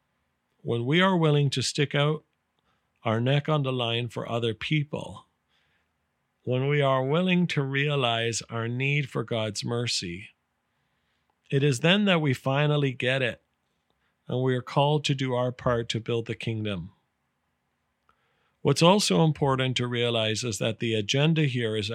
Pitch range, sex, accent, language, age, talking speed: 115-140 Hz, male, American, English, 40-59, 155 wpm